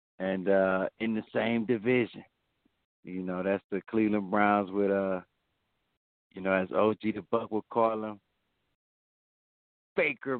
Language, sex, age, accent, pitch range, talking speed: English, male, 60-79, American, 95-115 Hz, 140 wpm